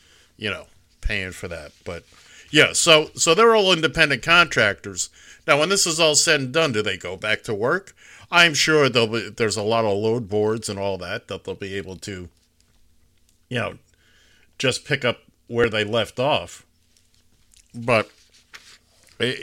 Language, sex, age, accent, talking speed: English, male, 50-69, American, 175 wpm